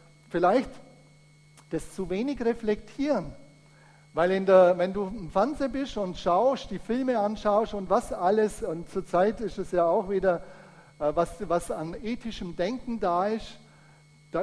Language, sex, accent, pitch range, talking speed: German, male, German, 160-225 Hz, 150 wpm